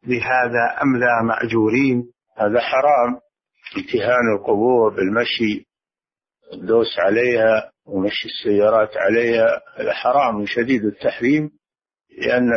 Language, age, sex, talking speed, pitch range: Arabic, 50-69, male, 90 wpm, 110-130 Hz